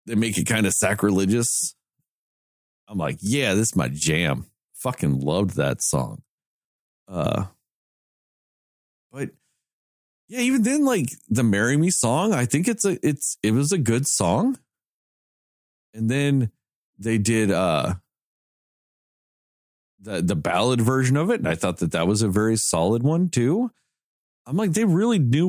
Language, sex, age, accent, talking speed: English, male, 40-59, American, 150 wpm